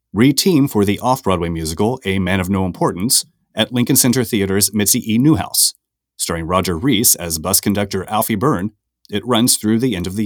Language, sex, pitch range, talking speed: English, male, 100-150 Hz, 185 wpm